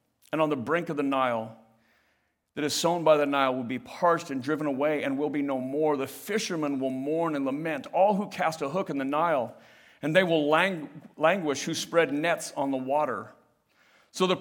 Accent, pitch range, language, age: American, 150-190 Hz, English, 50-69